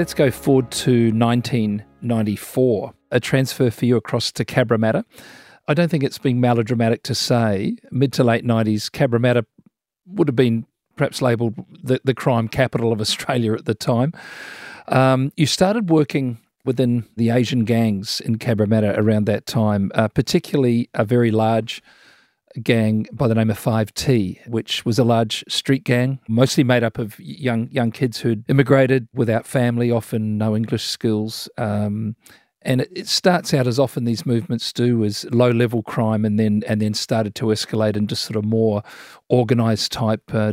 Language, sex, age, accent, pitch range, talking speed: English, male, 40-59, Australian, 110-130 Hz, 165 wpm